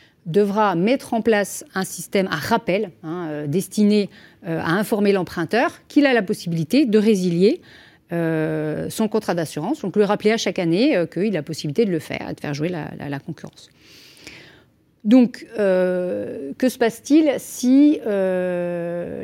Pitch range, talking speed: 160-215 Hz, 160 wpm